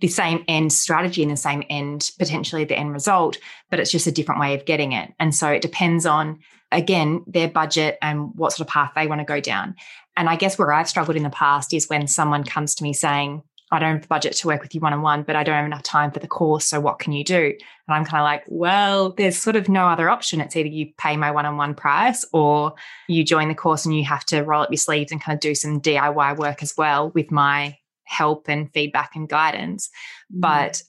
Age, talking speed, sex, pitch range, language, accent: 20-39, 250 wpm, female, 150-170 Hz, English, Australian